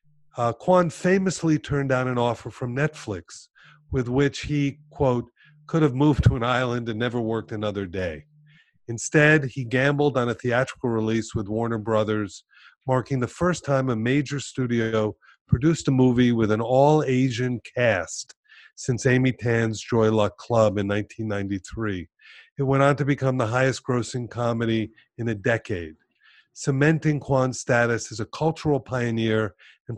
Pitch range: 110-140 Hz